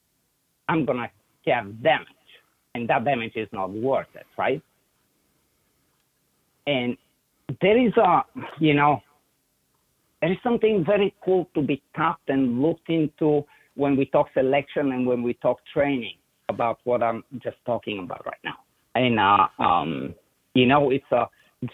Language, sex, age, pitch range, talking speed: English, male, 50-69, 110-150 Hz, 150 wpm